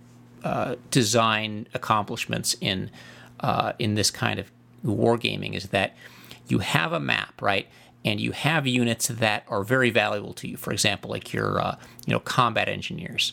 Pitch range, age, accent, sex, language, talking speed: 115-140 Hz, 40-59, American, male, English, 160 wpm